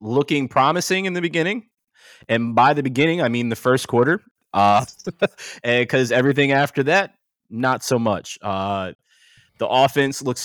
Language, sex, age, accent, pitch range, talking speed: English, male, 20-39, American, 100-130 Hz, 150 wpm